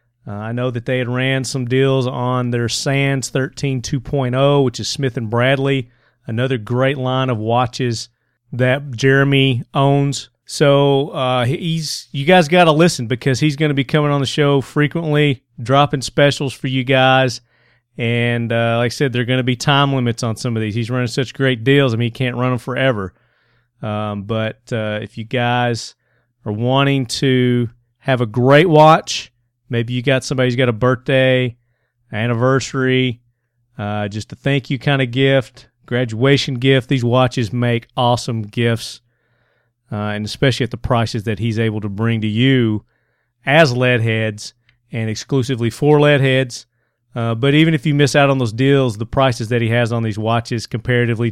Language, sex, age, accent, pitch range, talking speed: English, male, 40-59, American, 120-135 Hz, 180 wpm